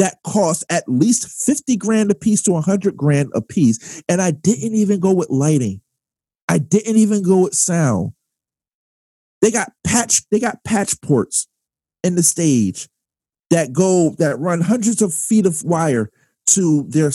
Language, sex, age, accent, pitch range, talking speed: English, male, 40-59, American, 170-230 Hz, 165 wpm